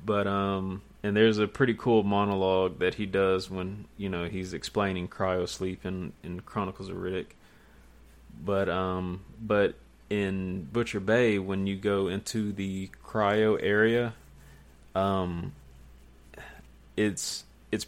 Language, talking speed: English, 130 wpm